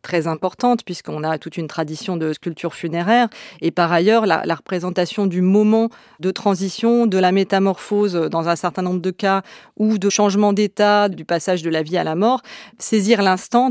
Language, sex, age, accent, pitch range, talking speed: French, female, 30-49, French, 170-200 Hz, 190 wpm